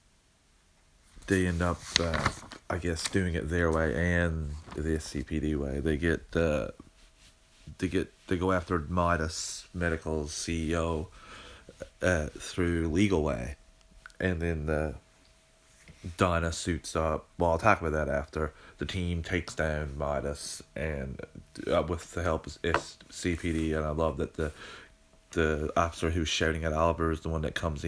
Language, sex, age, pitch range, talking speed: English, male, 30-49, 80-90 Hz, 150 wpm